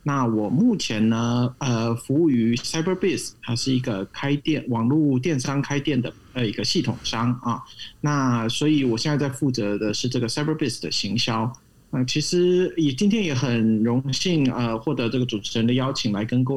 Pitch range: 115-140 Hz